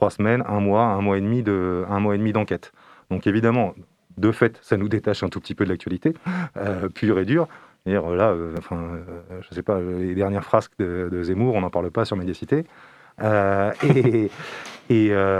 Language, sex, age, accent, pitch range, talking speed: French, male, 30-49, French, 95-110 Hz, 210 wpm